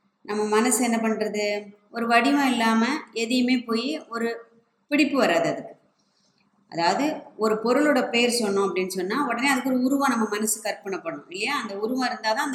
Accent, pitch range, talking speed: native, 195-235 Hz, 160 wpm